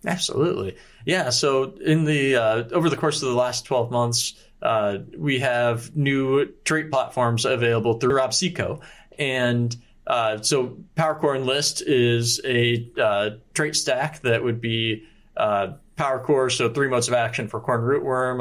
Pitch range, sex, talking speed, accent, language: 110-130 Hz, male, 150 wpm, American, English